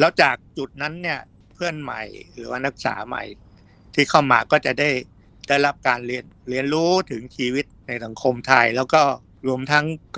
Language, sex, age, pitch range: Thai, male, 60-79, 115-140 Hz